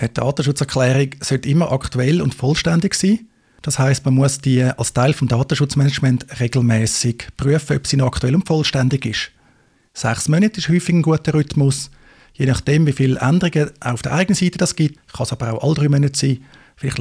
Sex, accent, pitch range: male, Austrian, 130-155 Hz